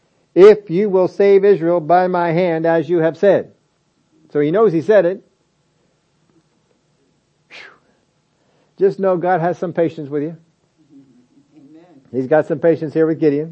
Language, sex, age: English, male, 50-69